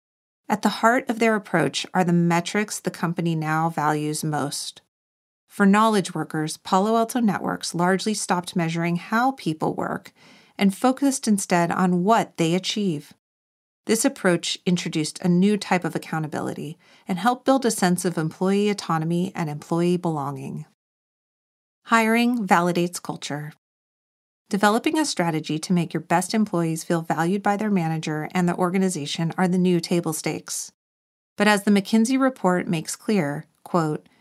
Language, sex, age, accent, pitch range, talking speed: English, female, 40-59, American, 165-205 Hz, 145 wpm